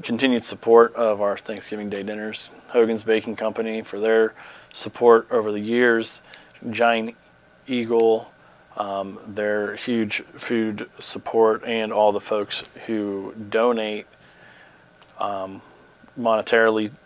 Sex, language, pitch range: male, English, 100-115 Hz